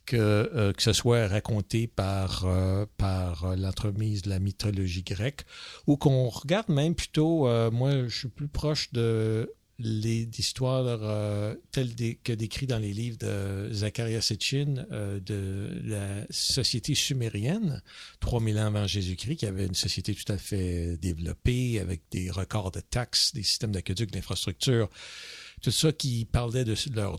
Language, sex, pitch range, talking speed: French, male, 100-120 Hz, 155 wpm